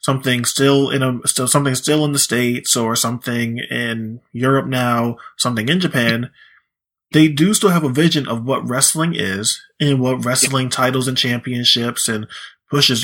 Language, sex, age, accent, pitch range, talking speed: English, male, 20-39, American, 120-140 Hz, 165 wpm